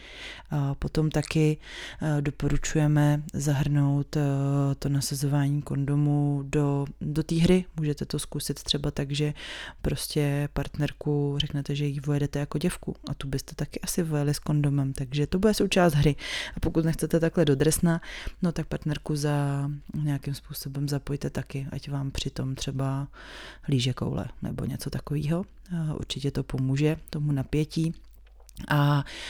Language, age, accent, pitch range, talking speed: Czech, 30-49, native, 140-150 Hz, 135 wpm